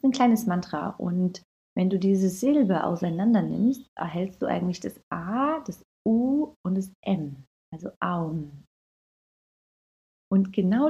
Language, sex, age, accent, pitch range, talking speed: German, female, 30-49, German, 160-215 Hz, 130 wpm